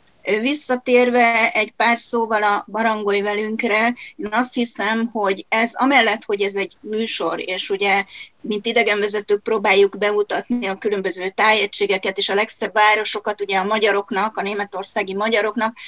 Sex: female